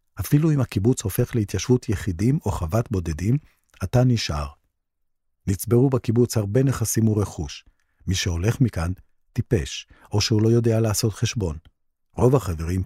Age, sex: 50-69, male